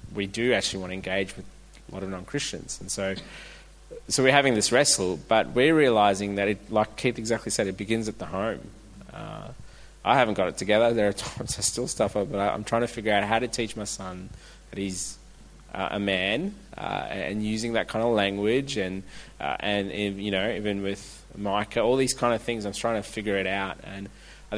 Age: 20-39